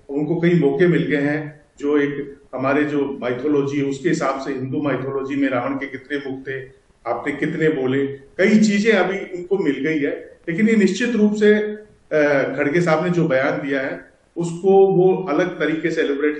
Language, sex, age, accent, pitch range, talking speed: Hindi, male, 50-69, native, 145-180 Hz, 185 wpm